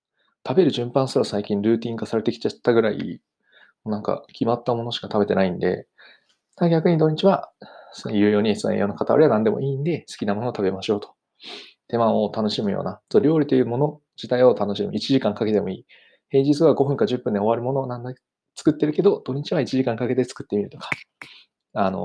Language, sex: Japanese, male